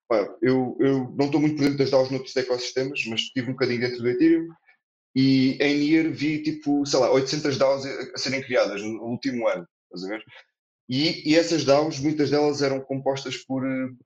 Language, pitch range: Portuguese, 120-150 Hz